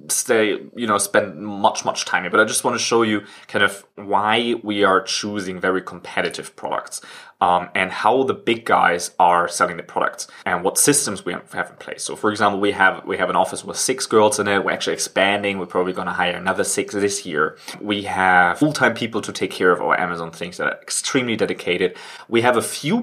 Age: 20-39